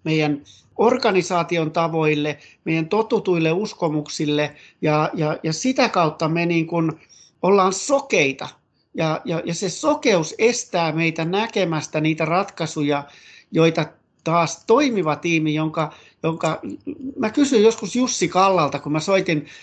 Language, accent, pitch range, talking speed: Finnish, native, 150-185 Hz, 120 wpm